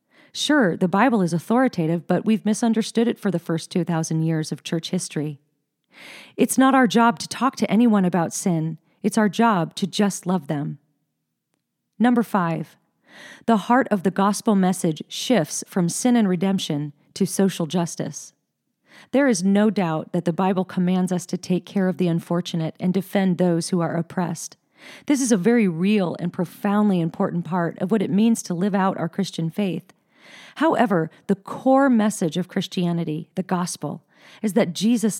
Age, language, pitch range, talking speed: 40-59, English, 170-220 Hz, 170 wpm